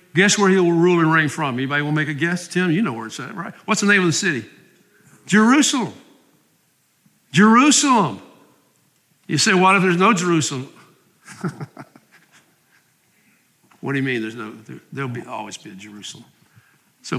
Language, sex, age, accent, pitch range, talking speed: English, male, 60-79, American, 135-185 Hz, 175 wpm